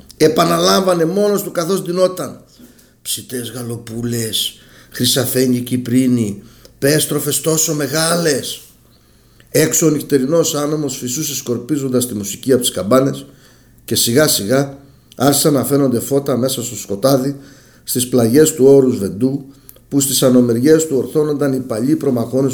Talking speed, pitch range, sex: 120 wpm, 125-155 Hz, male